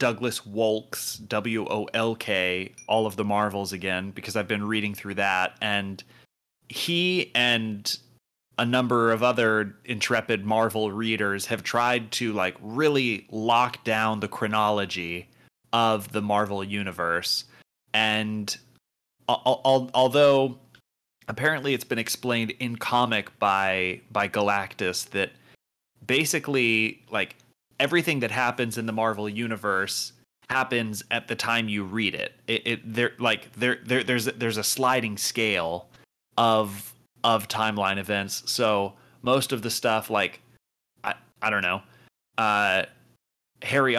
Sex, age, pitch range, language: male, 30-49, 105-125 Hz, English